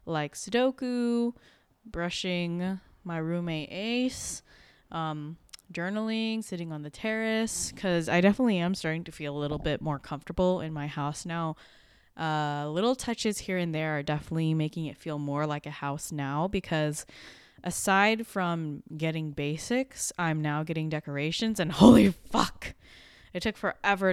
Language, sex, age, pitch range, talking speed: English, female, 20-39, 155-200 Hz, 145 wpm